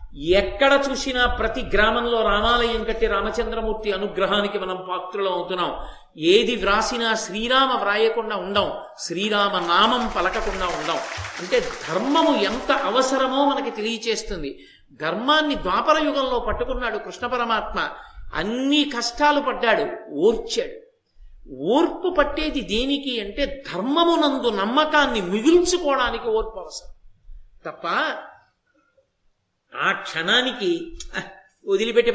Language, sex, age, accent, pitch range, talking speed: Telugu, male, 50-69, native, 220-295 Hz, 90 wpm